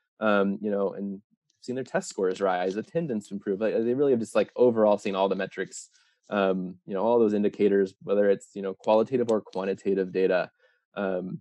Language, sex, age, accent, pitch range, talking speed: English, male, 20-39, American, 100-120 Hz, 190 wpm